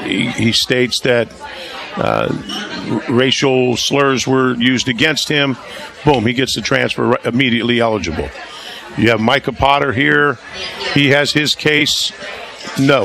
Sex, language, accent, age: male, English, American, 50-69